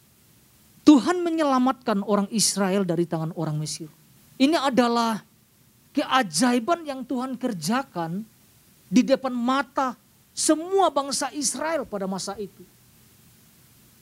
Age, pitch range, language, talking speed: 40-59, 205-305 Hz, Indonesian, 100 wpm